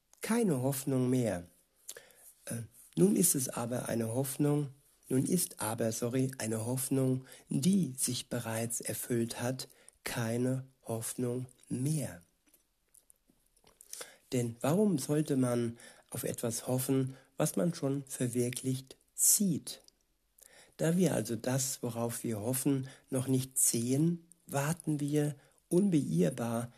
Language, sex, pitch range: German, male, 125-145 Hz